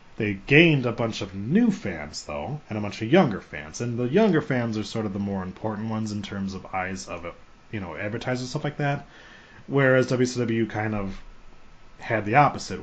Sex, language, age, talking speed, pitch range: male, English, 30-49, 205 wpm, 100-120 Hz